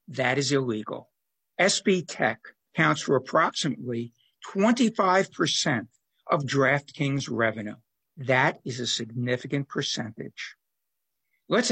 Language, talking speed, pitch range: English, 90 wpm, 130-185 Hz